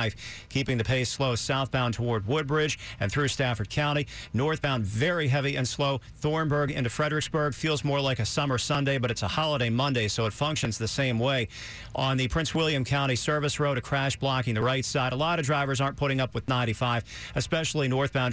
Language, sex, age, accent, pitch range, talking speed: English, male, 50-69, American, 120-145 Hz, 195 wpm